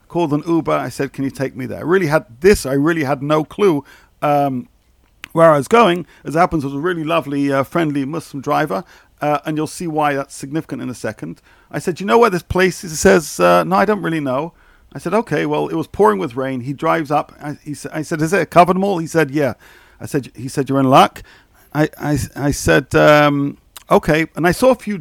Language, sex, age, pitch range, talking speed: English, male, 50-69, 140-175 Hz, 245 wpm